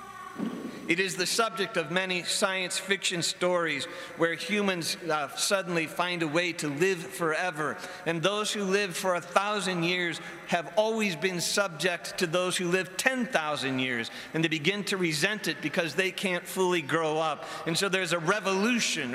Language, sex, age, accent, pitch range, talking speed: English, male, 50-69, American, 155-190 Hz, 170 wpm